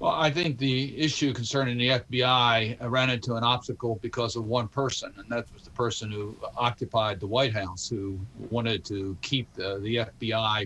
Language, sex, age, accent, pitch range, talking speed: English, male, 50-69, American, 110-130 Hz, 185 wpm